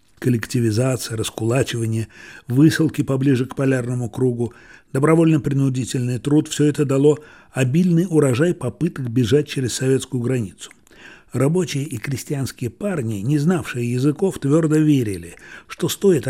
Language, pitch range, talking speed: Russian, 115-150 Hz, 110 wpm